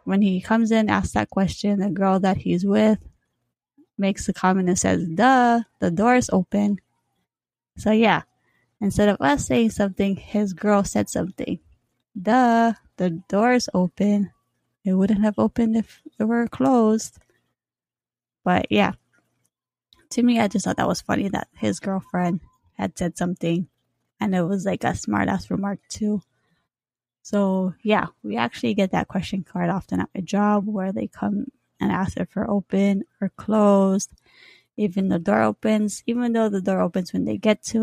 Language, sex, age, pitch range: English, female, 20-39, 180-210 Hz